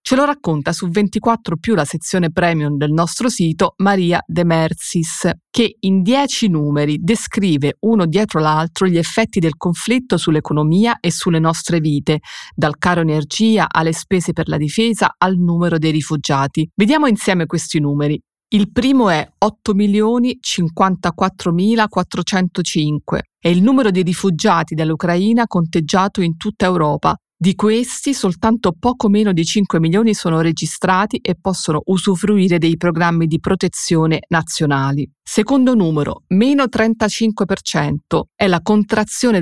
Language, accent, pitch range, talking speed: Italian, native, 165-210 Hz, 130 wpm